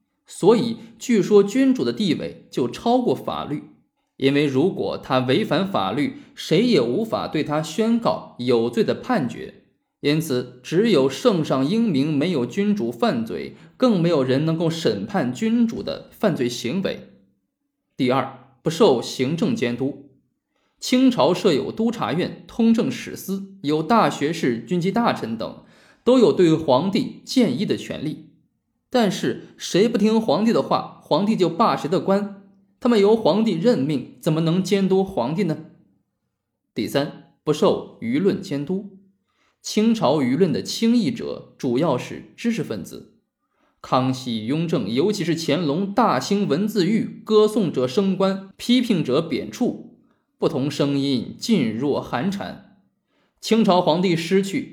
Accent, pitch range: native, 150-225 Hz